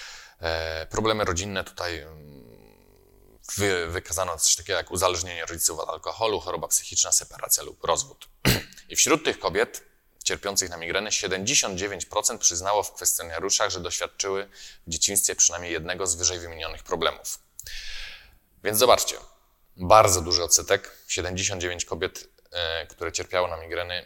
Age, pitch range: 20-39, 85-100 Hz